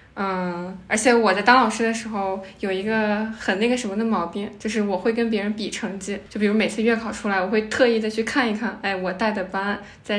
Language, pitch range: Chinese, 200-235 Hz